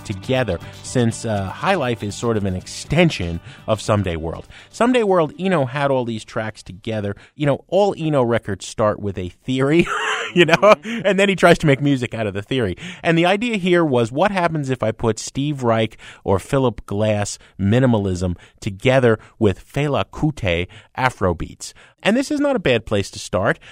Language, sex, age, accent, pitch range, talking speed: English, male, 30-49, American, 105-170 Hz, 185 wpm